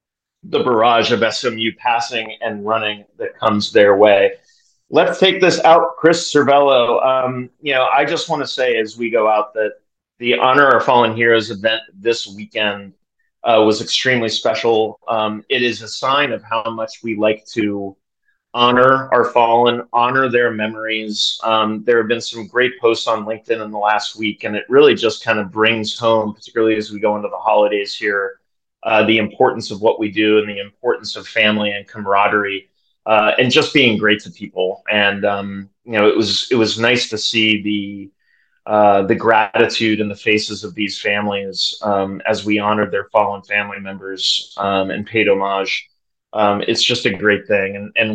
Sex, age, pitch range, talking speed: male, 30-49, 105-120 Hz, 185 wpm